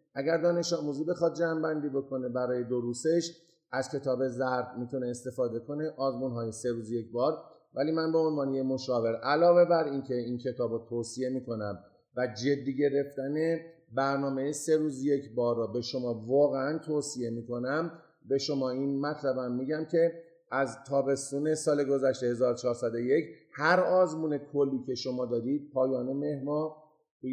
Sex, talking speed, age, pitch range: male, 145 wpm, 50-69, 125-155 Hz